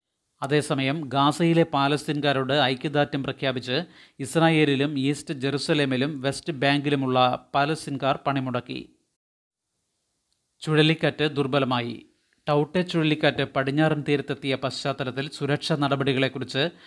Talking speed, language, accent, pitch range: 75 wpm, Malayalam, native, 135-150 Hz